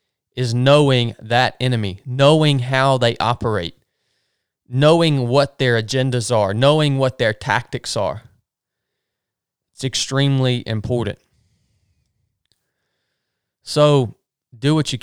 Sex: male